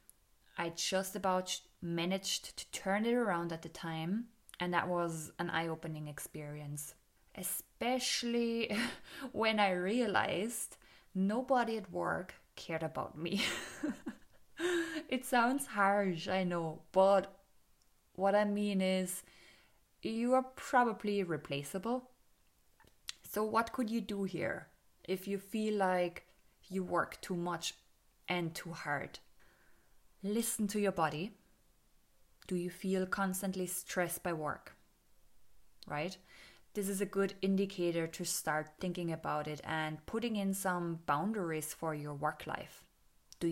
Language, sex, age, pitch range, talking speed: English, female, 20-39, 170-205 Hz, 125 wpm